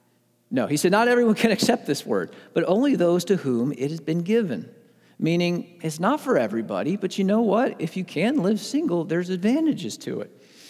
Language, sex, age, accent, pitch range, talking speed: English, male, 40-59, American, 130-210 Hz, 200 wpm